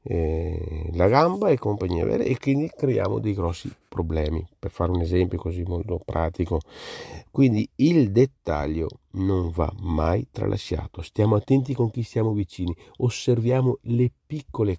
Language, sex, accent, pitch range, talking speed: Italian, male, native, 85-120 Hz, 135 wpm